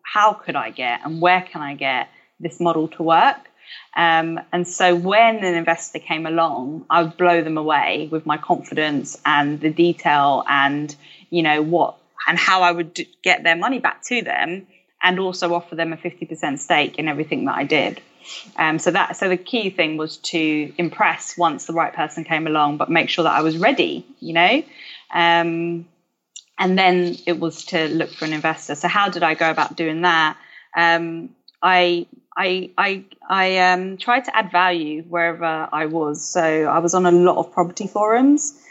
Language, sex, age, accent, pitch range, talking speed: English, female, 20-39, British, 160-180 Hz, 190 wpm